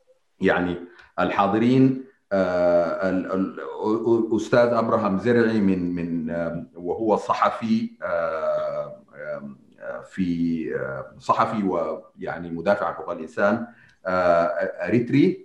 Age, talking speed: 40-59, 70 wpm